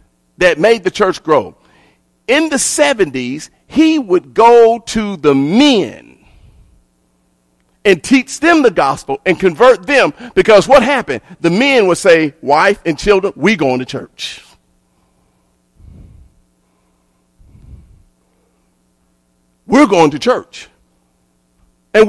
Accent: American